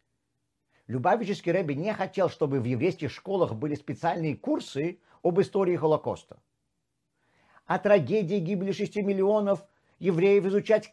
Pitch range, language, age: 130-195 Hz, Russian, 50-69